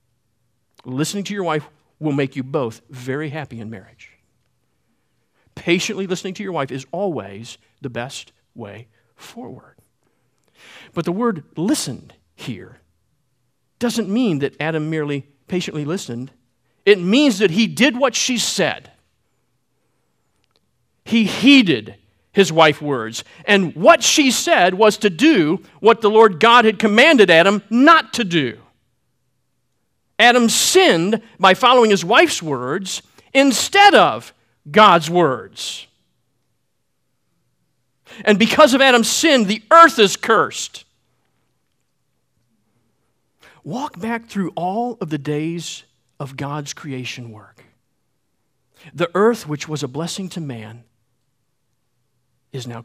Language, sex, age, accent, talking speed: English, male, 50-69, American, 120 wpm